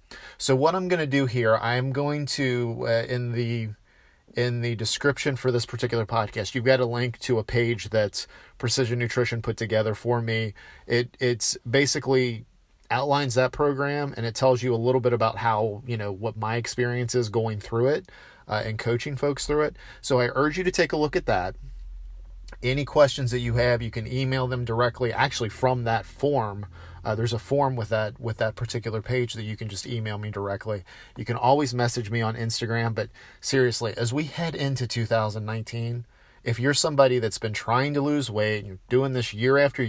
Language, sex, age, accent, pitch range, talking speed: English, male, 40-59, American, 115-130 Hz, 205 wpm